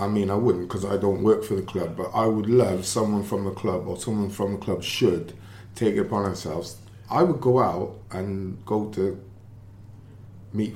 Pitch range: 95-115 Hz